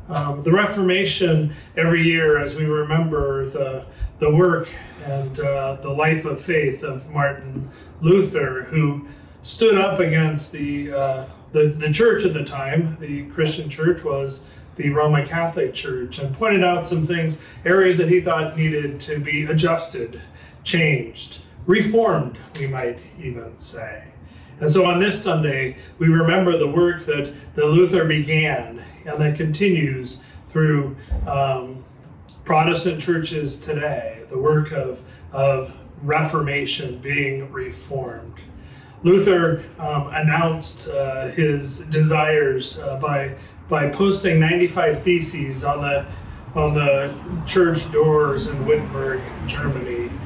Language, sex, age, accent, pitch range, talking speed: English, male, 40-59, American, 135-165 Hz, 130 wpm